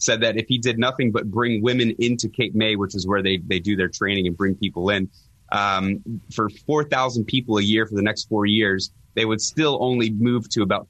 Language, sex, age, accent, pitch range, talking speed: English, male, 30-49, American, 100-120 Hz, 230 wpm